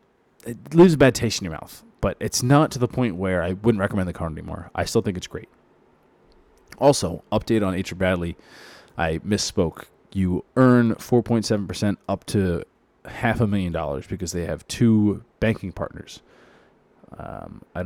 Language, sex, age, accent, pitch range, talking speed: English, male, 20-39, American, 90-120 Hz, 170 wpm